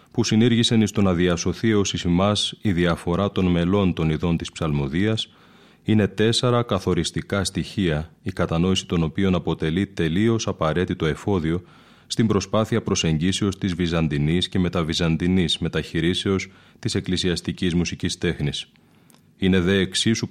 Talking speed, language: 125 wpm, Greek